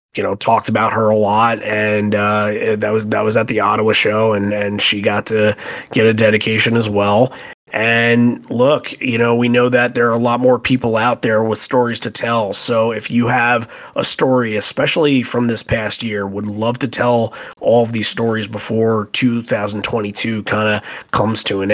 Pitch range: 110-120 Hz